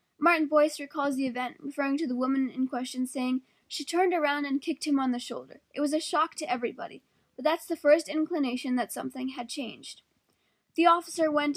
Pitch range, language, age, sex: 260-315 Hz, English, 10-29, female